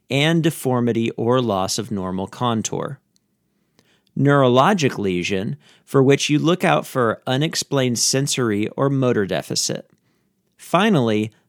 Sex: male